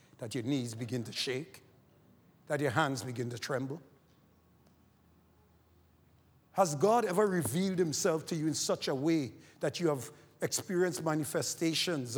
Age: 50-69